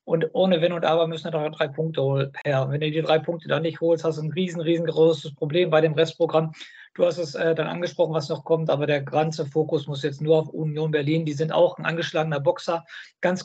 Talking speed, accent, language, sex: 245 wpm, German, German, male